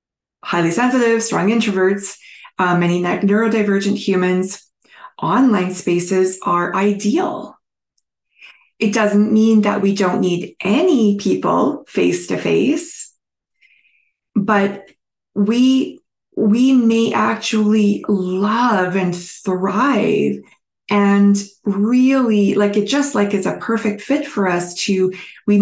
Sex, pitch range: female, 185-220 Hz